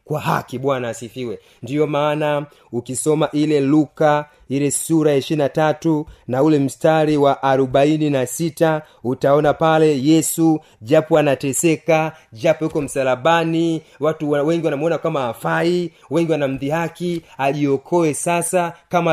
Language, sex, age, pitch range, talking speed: Swahili, male, 30-49, 145-170 Hz, 115 wpm